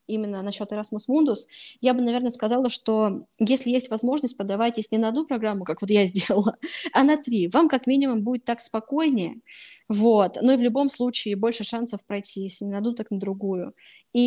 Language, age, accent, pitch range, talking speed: Russian, 20-39, native, 205-245 Hz, 200 wpm